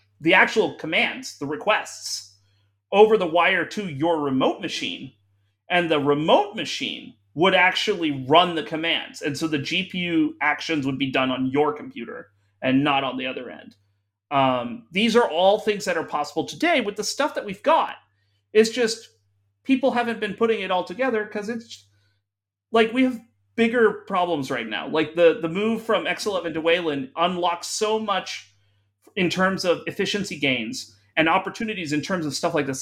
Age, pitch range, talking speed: 30-49, 130-205 Hz, 175 wpm